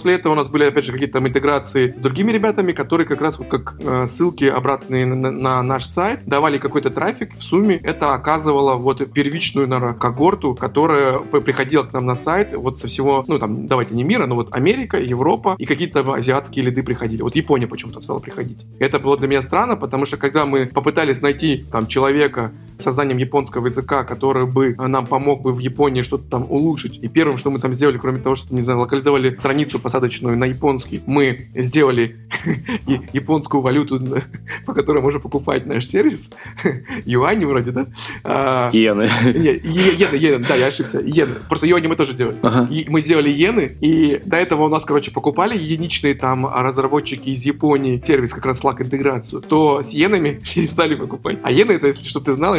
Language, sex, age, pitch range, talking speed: Russian, male, 20-39, 130-145 Hz, 180 wpm